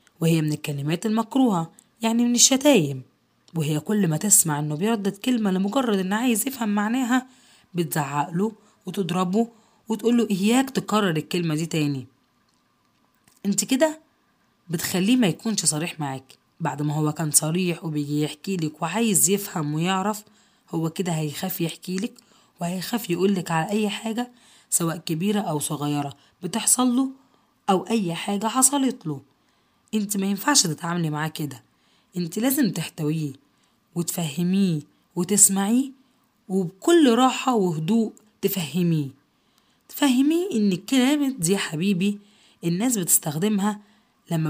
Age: 20-39